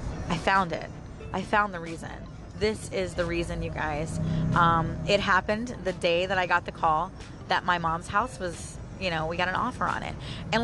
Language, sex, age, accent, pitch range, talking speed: English, female, 30-49, American, 185-285 Hz, 210 wpm